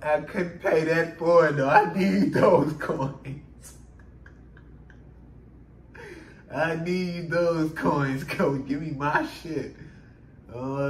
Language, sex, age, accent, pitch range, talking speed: English, male, 20-39, American, 130-160 Hz, 115 wpm